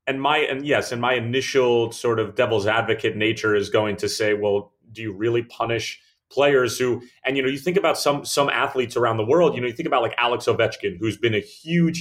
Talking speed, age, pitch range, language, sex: 235 wpm, 30-49, 110-130 Hz, English, male